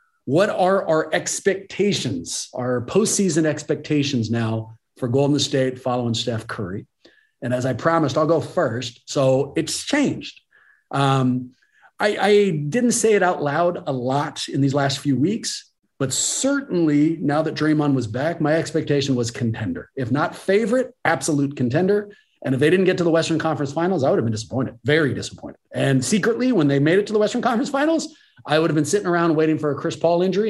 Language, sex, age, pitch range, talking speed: English, male, 40-59, 135-200 Hz, 185 wpm